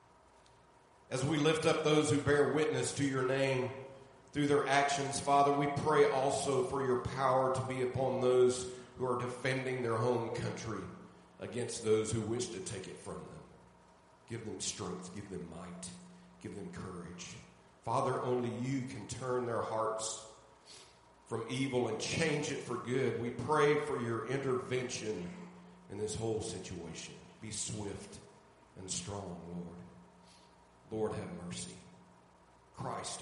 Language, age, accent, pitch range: English, 40-59, American, 105-130 Hz